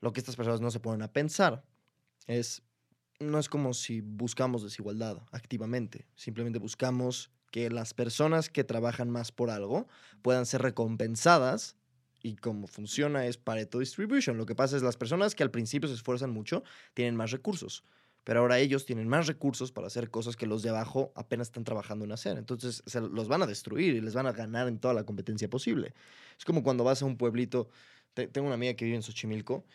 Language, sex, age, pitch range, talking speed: Spanish, male, 20-39, 115-135 Hz, 200 wpm